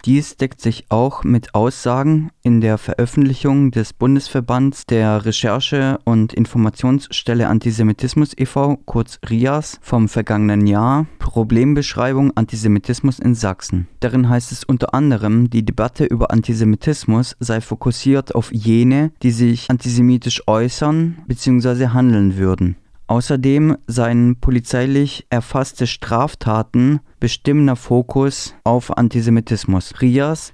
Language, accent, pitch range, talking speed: German, German, 115-135 Hz, 110 wpm